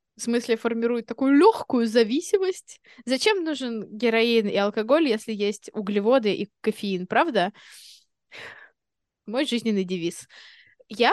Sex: female